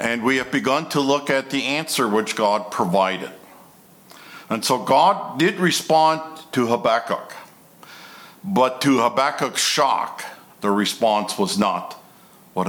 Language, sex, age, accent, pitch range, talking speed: English, male, 60-79, American, 115-155 Hz, 130 wpm